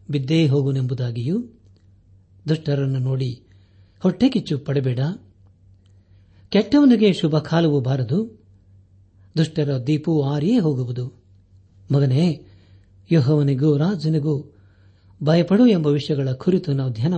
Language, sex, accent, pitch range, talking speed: Kannada, male, native, 100-160 Hz, 85 wpm